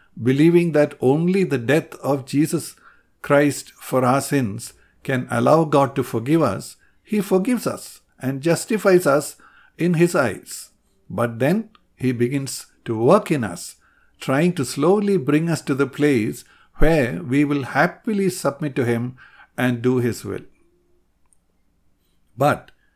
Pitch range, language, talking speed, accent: 120-150 Hz, English, 140 wpm, Indian